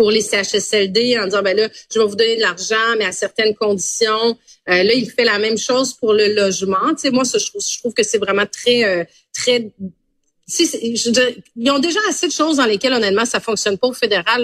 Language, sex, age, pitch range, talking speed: French, female, 30-49, 205-250 Hz, 235 wpm